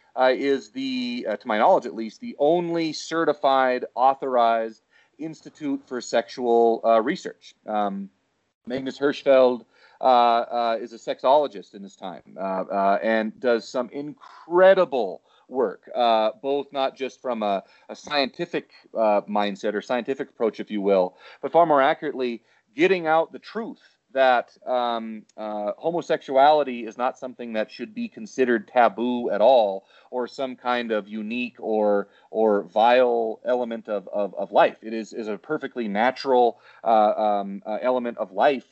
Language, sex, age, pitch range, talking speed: English, male, 30-49, 110-140 Hz, 155 wpm